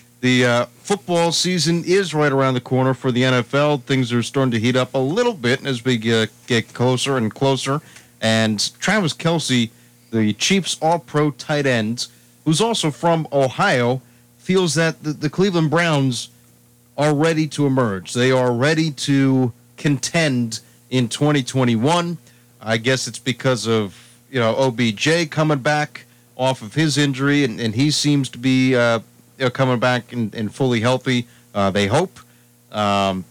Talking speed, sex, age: 165 wpm, male, 40-59